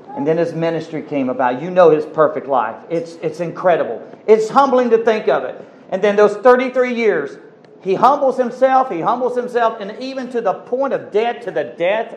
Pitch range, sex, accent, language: 170-240 Hz, male, American, English